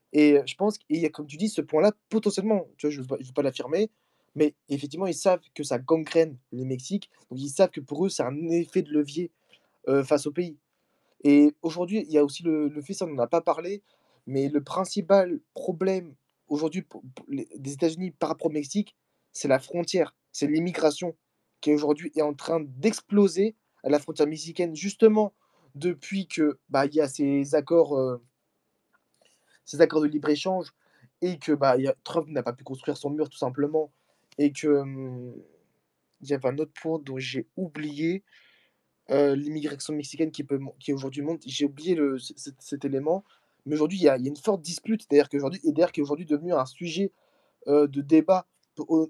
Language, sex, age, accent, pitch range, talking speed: French, male, 20-39, French, 145-180 Hz, 200 wpm